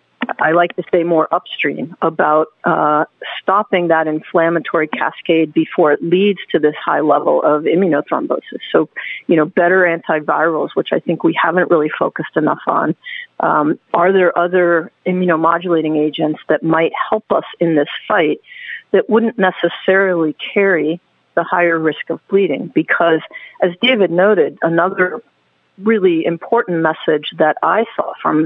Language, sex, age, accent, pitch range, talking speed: English, female, 40-59, American, 165-205 Hz, 145 wpm